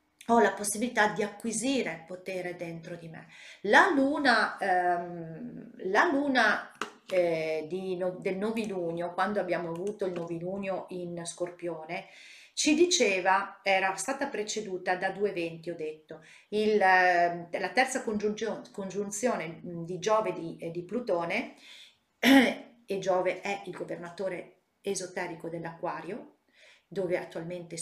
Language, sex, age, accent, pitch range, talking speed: Italian, female, 40-59, native, 175-225 Hz, 125 wpm